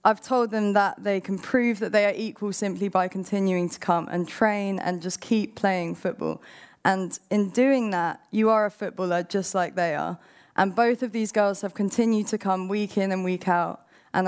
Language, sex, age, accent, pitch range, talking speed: English, female, 20-39, British, 190-230 Hz, 210 wpm